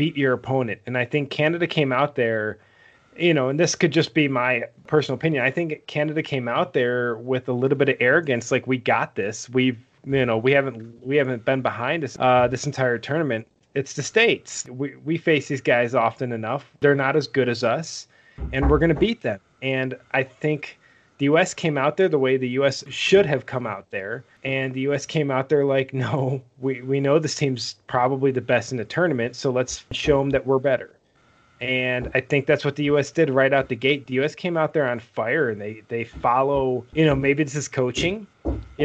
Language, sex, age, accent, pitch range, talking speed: English, male, 20-39, American, 125-150 Hz, 220 wpm